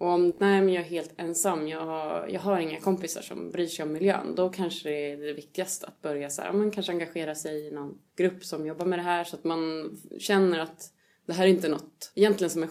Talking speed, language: 245 wpm, Swedish